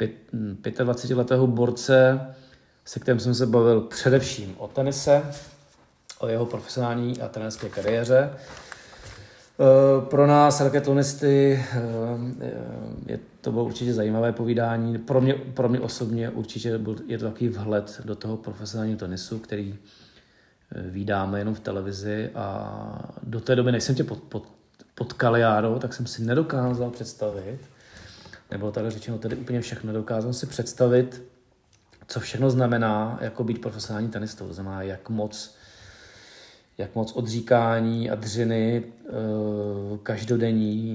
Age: 40-59